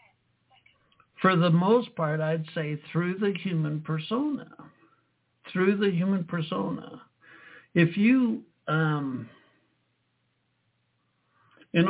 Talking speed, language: 90 wpm, English